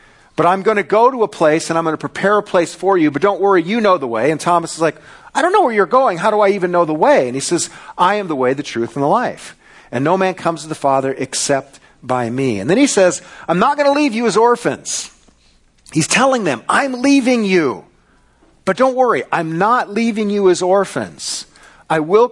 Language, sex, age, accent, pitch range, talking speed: English, male, 40-59, American, 145-200 Hz, 245 wpm